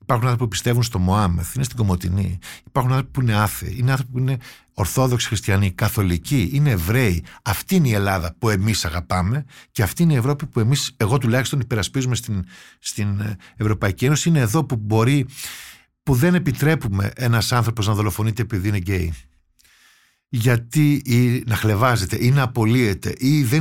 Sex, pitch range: male, 100-130 Hz